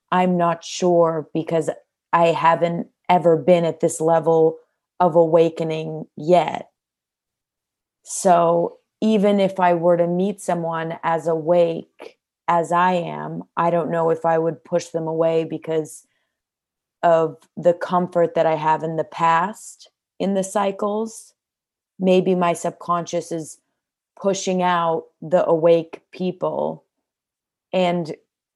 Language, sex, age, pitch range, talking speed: English, female, 30-49, 165-180 Hz, 125 wpm